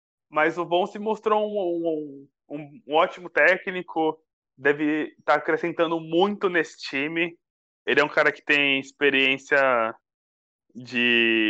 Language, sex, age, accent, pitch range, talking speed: Portuguese, male, 20-39, Brazilian, 135-180 Hz, 135 wpm